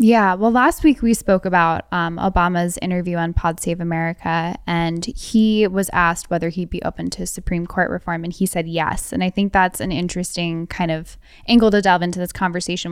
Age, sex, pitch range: 10-29, female, 165-190 Hz